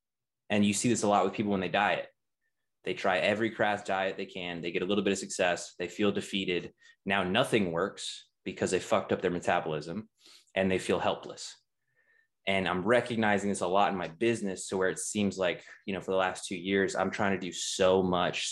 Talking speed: 220 wpm